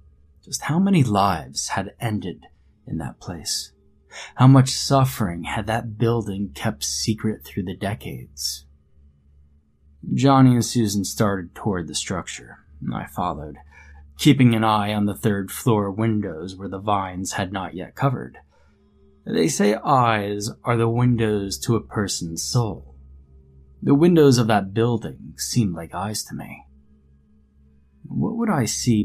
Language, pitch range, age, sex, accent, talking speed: English, 70-115 Hz, 20-39, male, American, 145 wpm